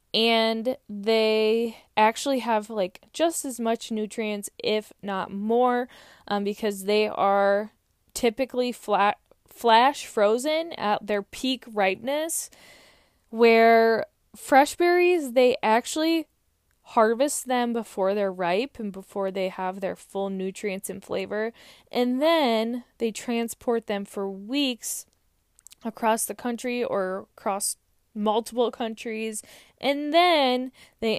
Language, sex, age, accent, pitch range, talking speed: English, female, 10-29, American, 205-250 Hz, 115 wpm